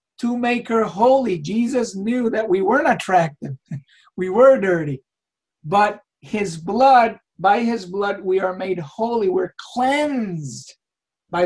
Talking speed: 135 wpm